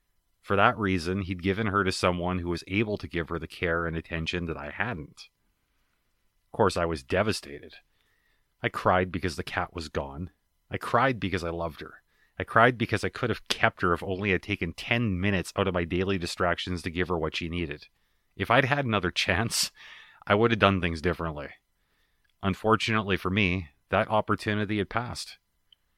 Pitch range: 85-105 Hz